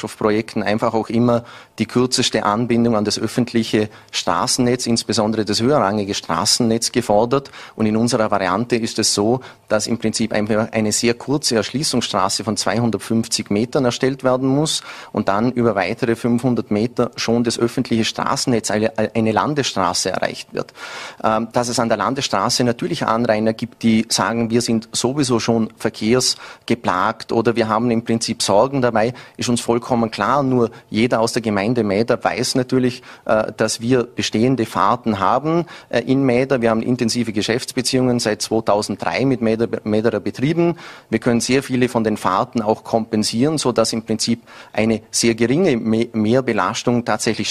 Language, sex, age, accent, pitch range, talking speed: German, male, 30-49, Austrian, 110-125 Hz, 150 wpm